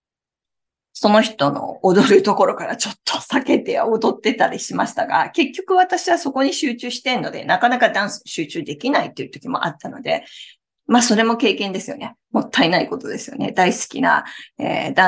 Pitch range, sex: 195-270 Hz, female